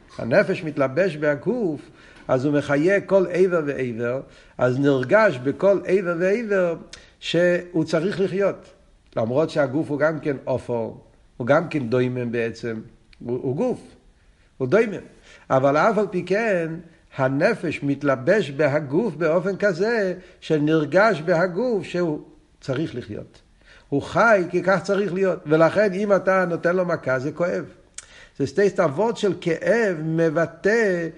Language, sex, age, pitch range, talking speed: Hebrew, male, 50-69, 150-200 Hz, 130 wpm